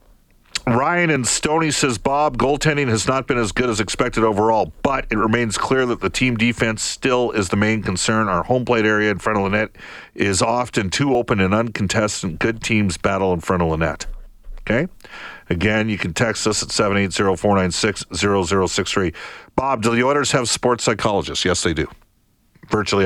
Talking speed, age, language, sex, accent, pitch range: 205 wpm, 50-69, English, male, American, 95-120 Hz